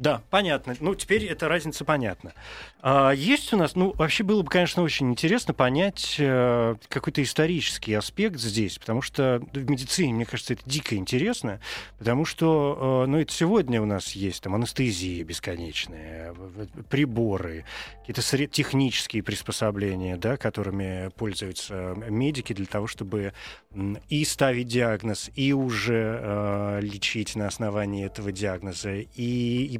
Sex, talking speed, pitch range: male, 135 wpm, 105-140 Hz